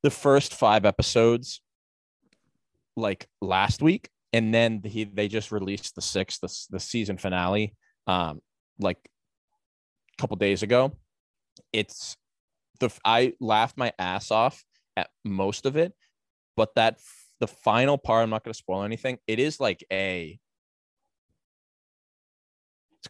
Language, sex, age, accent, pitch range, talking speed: English, male, 20-39, American, 95-120 Hz, 140 wpm